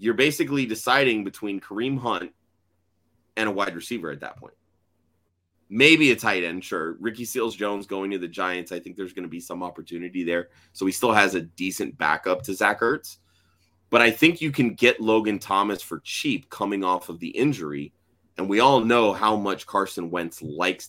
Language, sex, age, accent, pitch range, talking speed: English, male, 30-49, American, 85-100 Hz, 195 wpm